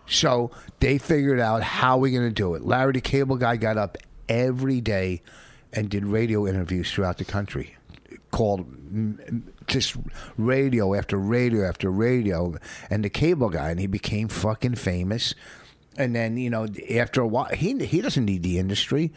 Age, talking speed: 50-69, 170 wpm